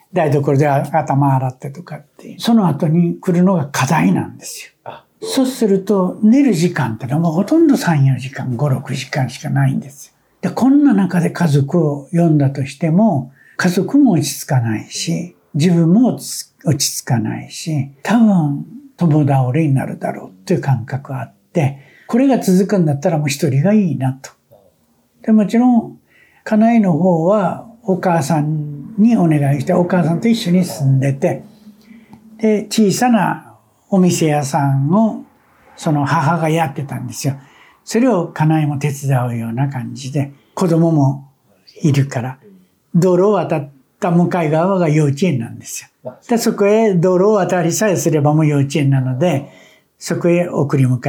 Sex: male